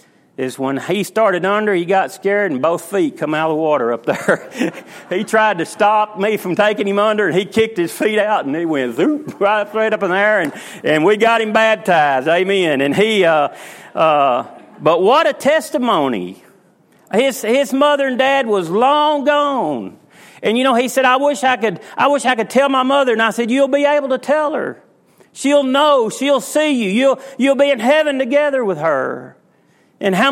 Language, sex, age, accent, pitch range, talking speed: English, male, 40-59, American, 175-260 Hz, 210 wpm